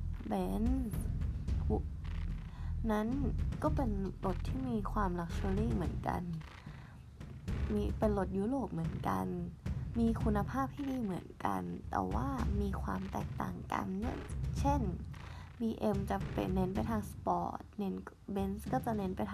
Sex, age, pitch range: female, 20-39, 80-125 Hz